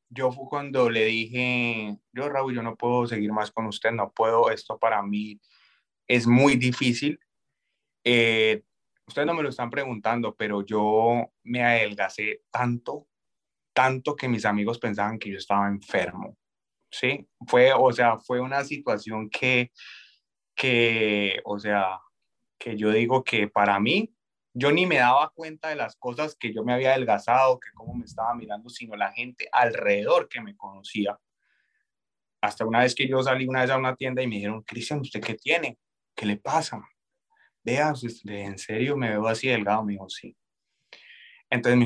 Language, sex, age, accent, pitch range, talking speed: Spanish, male, 20-39, Colombian, 110-140 Hz, 170 wpm